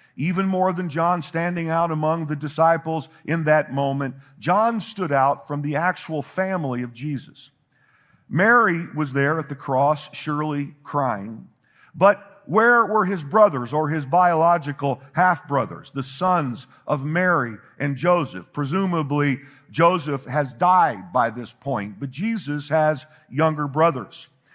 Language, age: English, 50-69